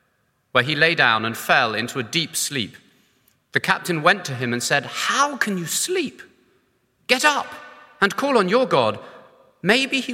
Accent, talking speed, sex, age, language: British, 180 wpm, male, 30-49, English